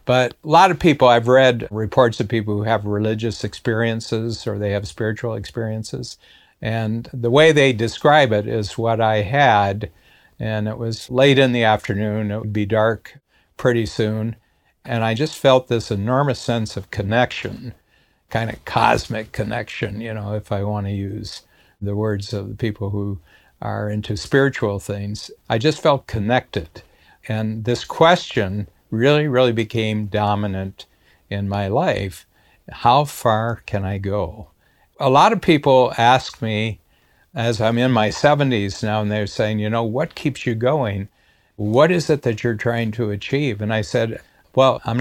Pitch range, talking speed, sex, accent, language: 105-125 Hz, 165 wpm, male, American, English